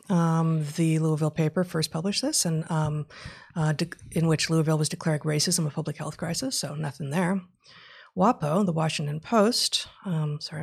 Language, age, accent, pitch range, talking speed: English, 30-49, American, 155-190 Hz, 170 wpm